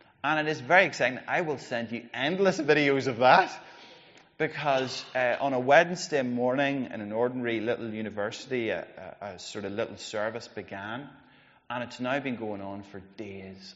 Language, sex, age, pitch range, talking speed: English, male, 30-49, 95-125 Hz, 175 wpm